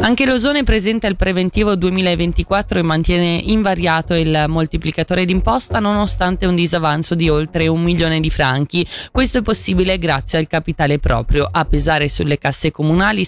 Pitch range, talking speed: 160-210 Hz, 150 wpm